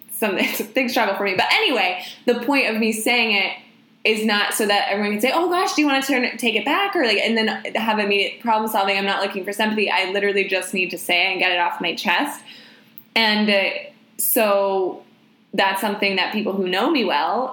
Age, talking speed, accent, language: 20-39, 230 wpm, American, English